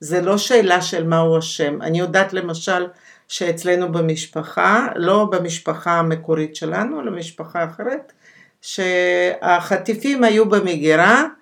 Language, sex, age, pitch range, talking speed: Hebrew, female, 50-69, 165-215 Hz, 110 wpm